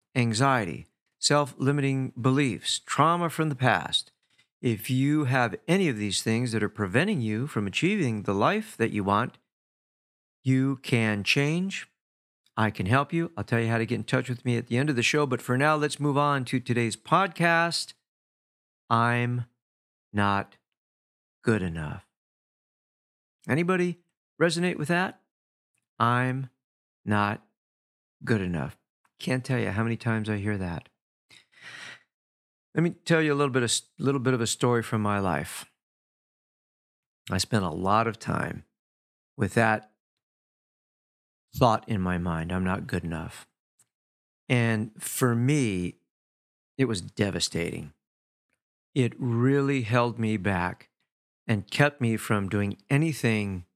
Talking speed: 145 wpm